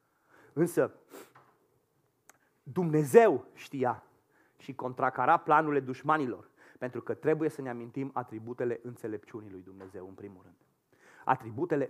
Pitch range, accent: 120-155 Hz, native